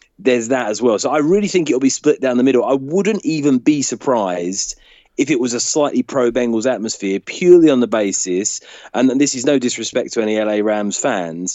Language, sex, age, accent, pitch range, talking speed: English, male, 30-49, British, 110-130 Hz, 210 wpm